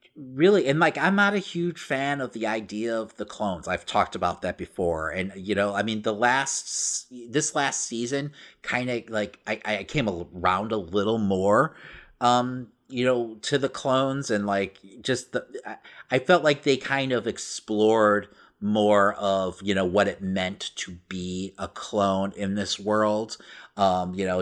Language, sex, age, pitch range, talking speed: English, male, 30-49, 95-115 Hz, 175 wpm